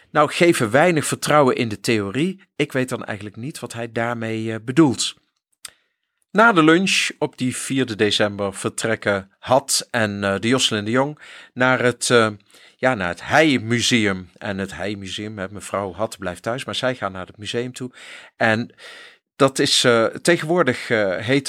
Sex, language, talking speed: male, Dutch, 170 wpm